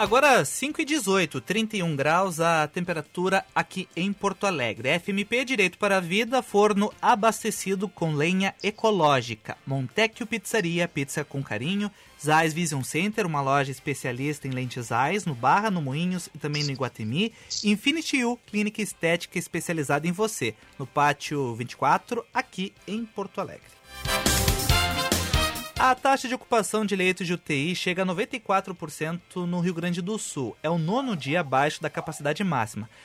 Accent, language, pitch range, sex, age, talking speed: Brazilian, Portuguese, 150-205 Hz, male, 30-49, 145 wpm